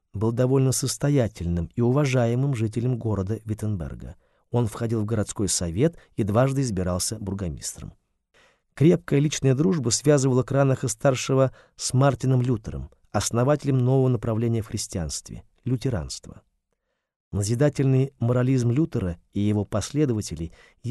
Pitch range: 105-140 Hz